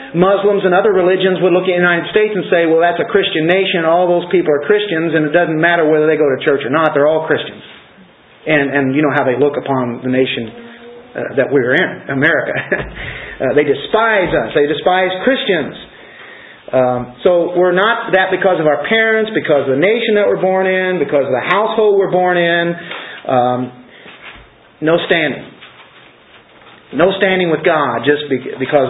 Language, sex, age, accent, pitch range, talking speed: English, male, 40-59, American, 140-185 Hz, 190 wpm